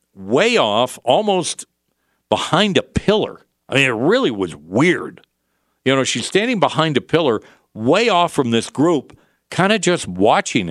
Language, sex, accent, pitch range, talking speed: English, male, American, 90-145 Hz, 155 wpm